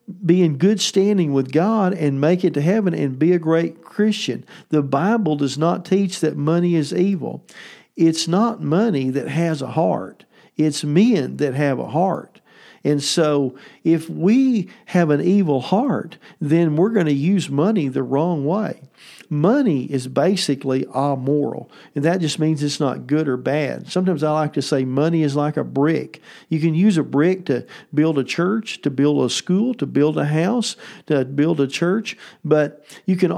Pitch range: 145-190 Hz